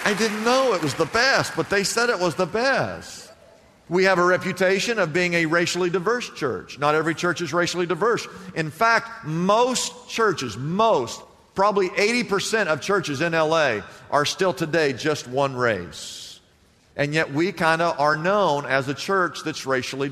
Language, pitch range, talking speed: English, 140-195 Hz, 175 wpm